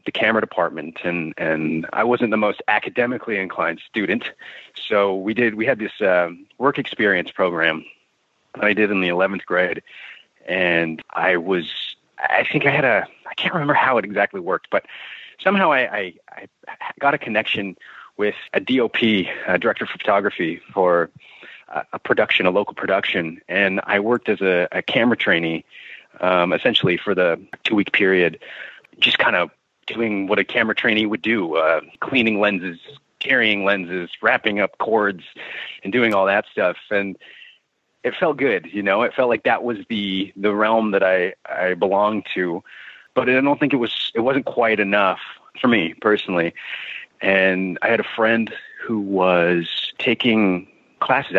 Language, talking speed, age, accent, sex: English, 170 wpm, 30-49, American, male